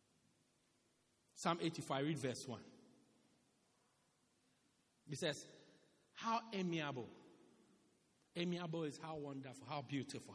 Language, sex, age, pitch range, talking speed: English, male, 50-69, 155-255 Hz, 95 wpm